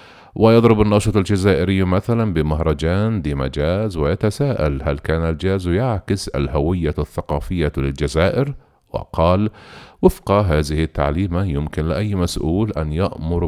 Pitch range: 75-105 Hz